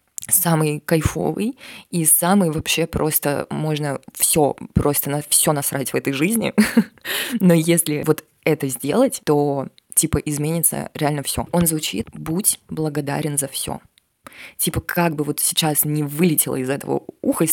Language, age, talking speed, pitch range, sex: Russian, 20-39, 140 wpm, 150-190 Hz, female